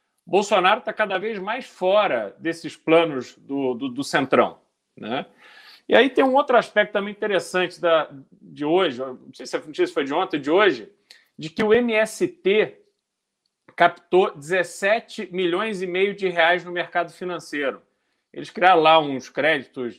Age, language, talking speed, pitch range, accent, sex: 40-59, Portuguese, 160 wpm, 160-230 Hz, Brazilian, male